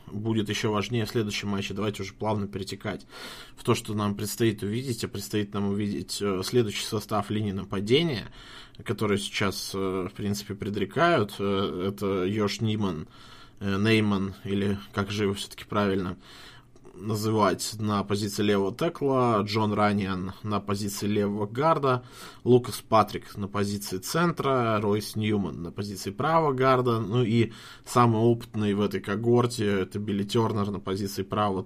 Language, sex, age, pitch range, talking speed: Russian, male, 20-39, 100-115 Hz, 140 wpm